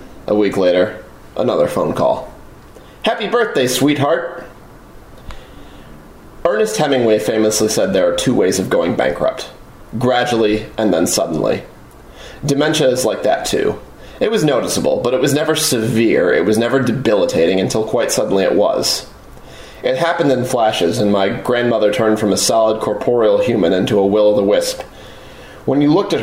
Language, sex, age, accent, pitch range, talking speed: English, male, 30-49, American, 105-130 Hz, 150 wpm